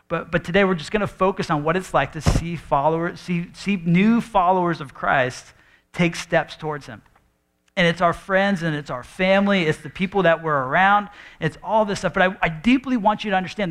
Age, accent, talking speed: 40-59, American, 225 wpm